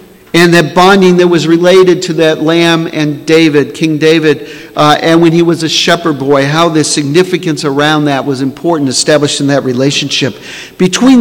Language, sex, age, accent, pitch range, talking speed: English, male, 50-69, American, 155-185 Hz, 175 wpm